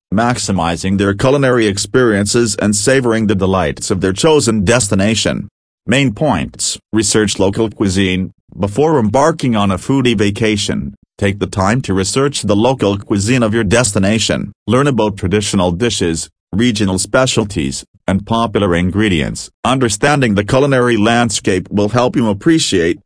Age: 40-59